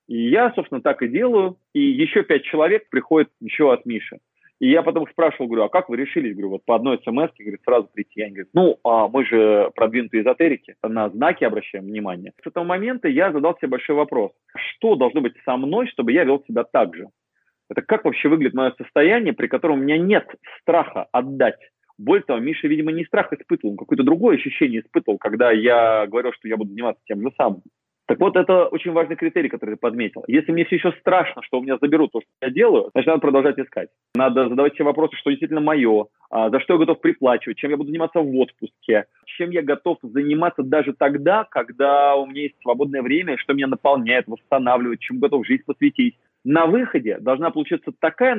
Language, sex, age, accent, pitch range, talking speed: Russian, male, 30-49, native, 130-180 Hz, 205 wpm